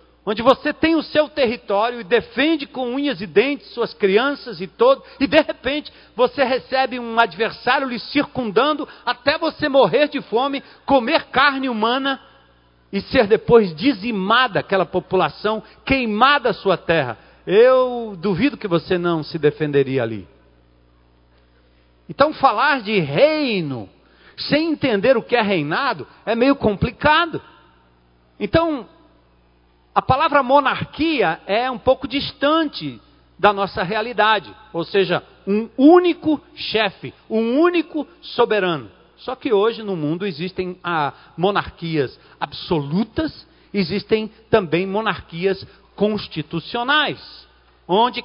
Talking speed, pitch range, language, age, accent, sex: 120 wpm, 180-275 Hz, Portuguese, 50-69, Brazilian, male